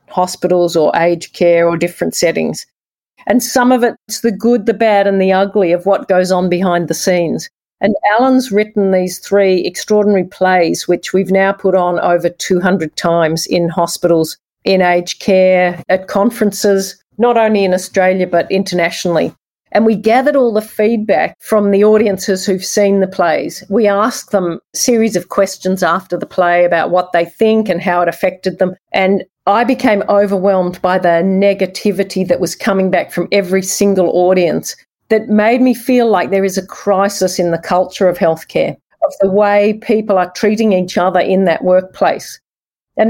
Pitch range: 180-205 Hz